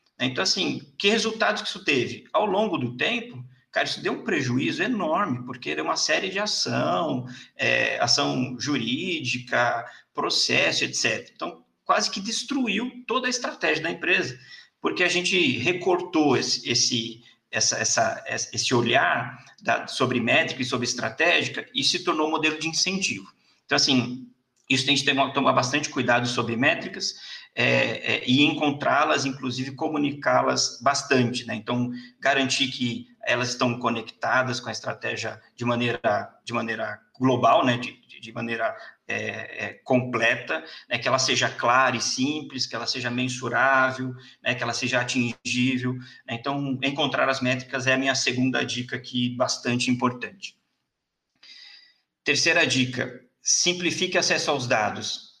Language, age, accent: Portuguese, 50-69, Brazilian